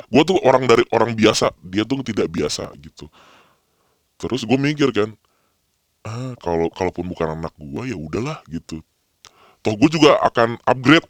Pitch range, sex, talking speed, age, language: 90-115 Hz, female, 155 wpm, 20-39, English